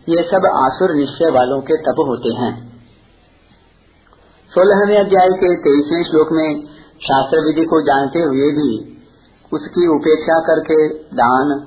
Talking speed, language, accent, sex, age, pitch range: 130 wpm, Hindi, native, male, 50-69, 125-160 Hz